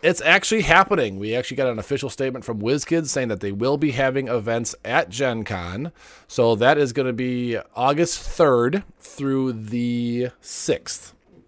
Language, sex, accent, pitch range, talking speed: English, male, American, 105-135 Hz, 165 wpm